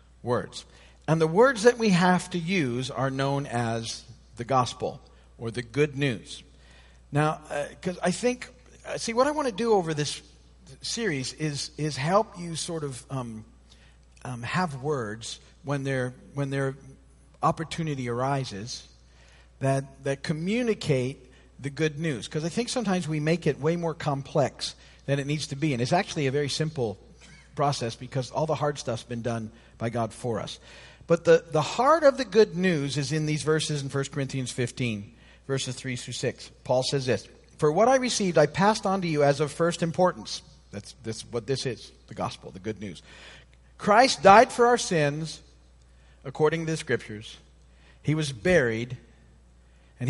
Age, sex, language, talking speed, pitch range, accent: 50-69, male, English, 180 wpm, 115-160 Hz, American